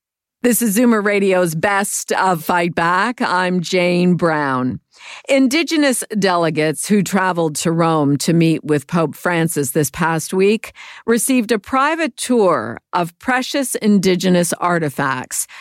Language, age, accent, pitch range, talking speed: English, 50-69, American, 165-210 Hz, 125 wpm